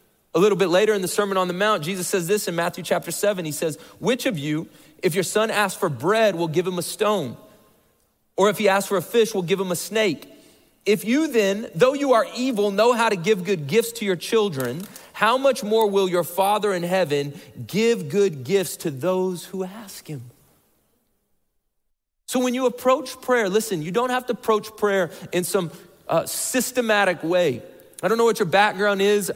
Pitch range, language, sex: 155-205 Hz, English, male